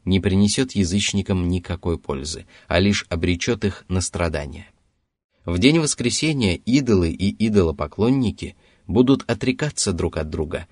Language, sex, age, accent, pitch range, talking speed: Russian, male, 20-39, native, 85-110 Hz, 125 wpm